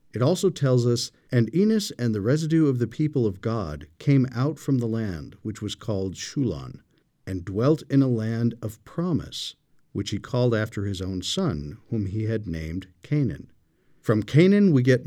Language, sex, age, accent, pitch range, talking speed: English, male, 50-69, American, 105-140 Hz, 185 wpm